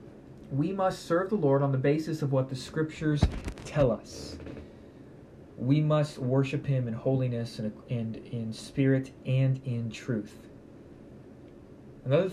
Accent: American